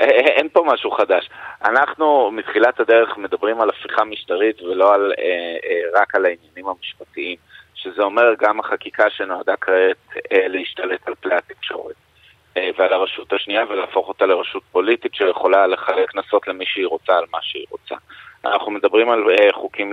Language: Hebrew